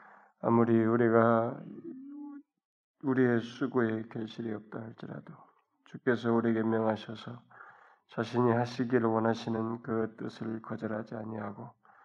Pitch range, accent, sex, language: 110-120 Hz, native, male, Korean